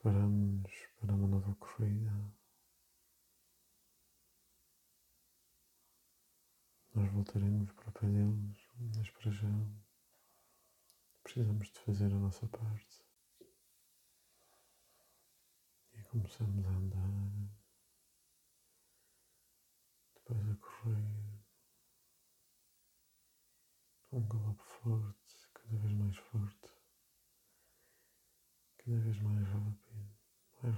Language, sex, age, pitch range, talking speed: Portuguese, male, 50-69, 105-115 Hz, 75 wpm